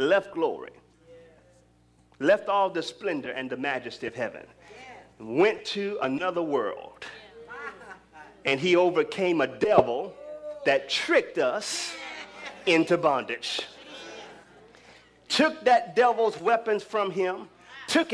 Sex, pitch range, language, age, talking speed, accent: male, 220-330 Hz, English, 40-59, 105 wpm, American